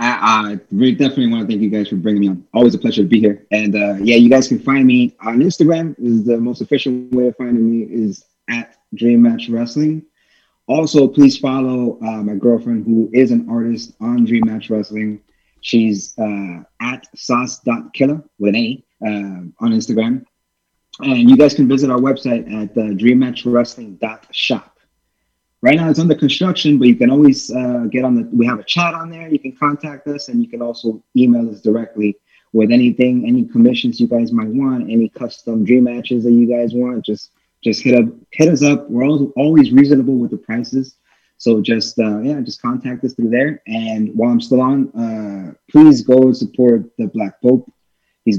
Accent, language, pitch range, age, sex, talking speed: American, English, 115-150 Hz, 30-49, male, 195 wpm